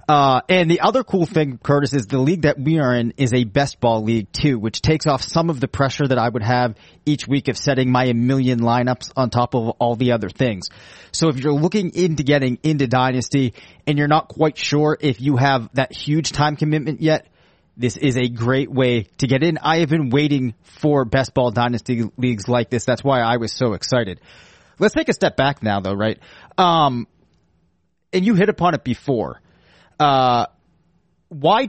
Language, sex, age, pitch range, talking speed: English, male, 30-49, 120-150 Hz, 205 wpm